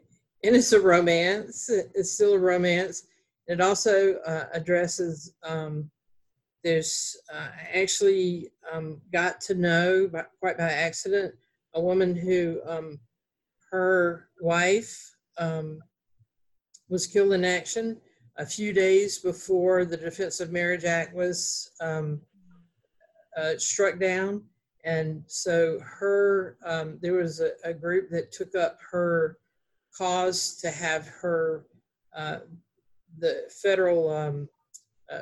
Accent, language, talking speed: American, English, 120 wpm